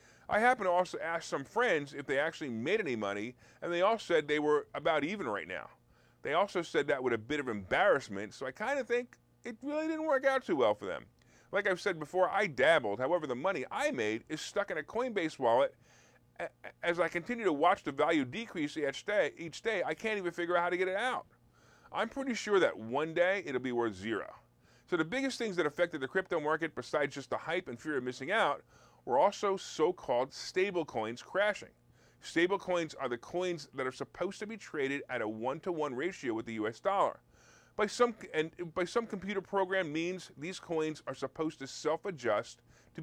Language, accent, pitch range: English, American, 135-195 Hz